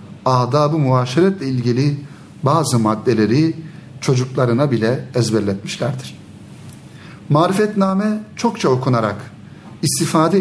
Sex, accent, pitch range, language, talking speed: male, native, 115-150 Hz, Turkish, 70 wpm